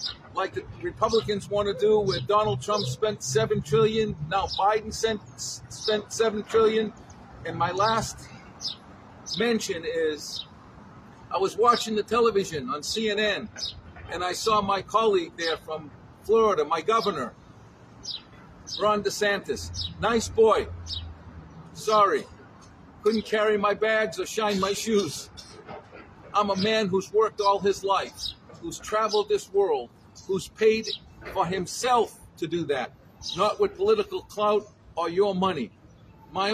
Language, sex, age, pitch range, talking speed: English, male, 50-69, 195-220 Hz, 130 wpm